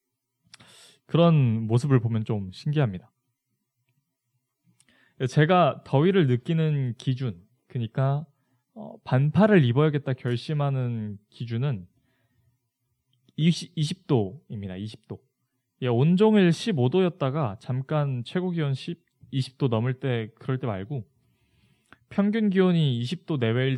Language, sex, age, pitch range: Korean, male, 20-39, 120-150 Hz